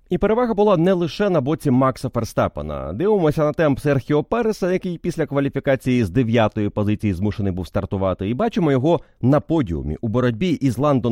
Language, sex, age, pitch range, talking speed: Ukrainian, male, 30-49, 105-155 Hz, 175 wpm